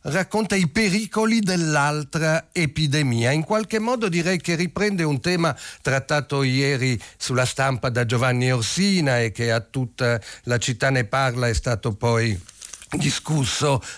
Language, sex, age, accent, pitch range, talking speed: Italian, male, 50-69, native, 120-165 Hz, 135 wpm